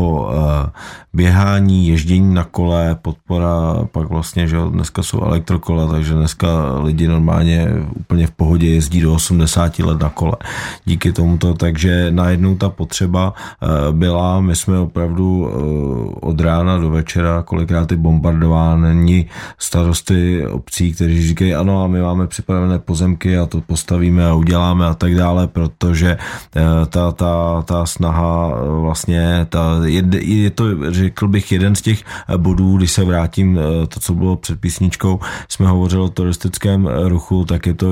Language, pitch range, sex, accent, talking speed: Czech, 80-90 Hz, male, native, 140 wpm